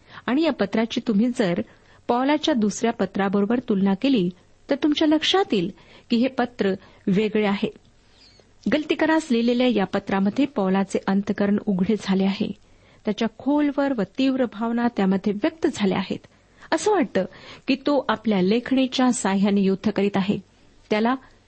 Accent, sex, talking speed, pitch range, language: native, female, 135 wpm, 195-260 Hz, Marathi